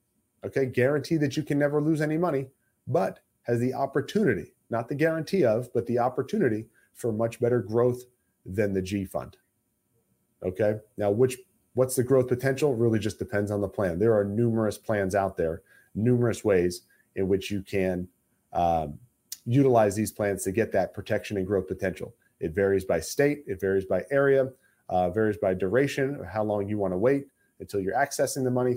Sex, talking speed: male, 185 wpm